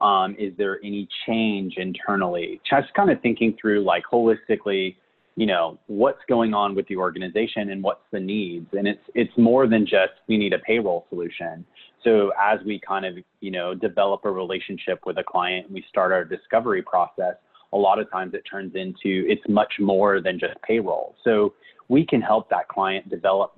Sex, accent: male, American